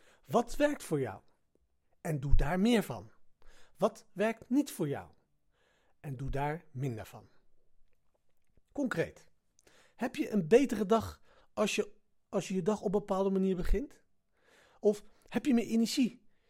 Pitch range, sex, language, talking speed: 150-225 Hz, male, Dutch, 140 wpm